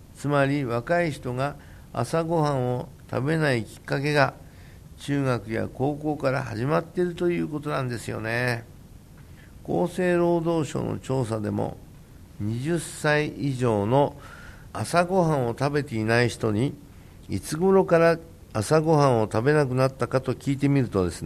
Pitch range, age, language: 110-150 Hz, 60-79, Japanese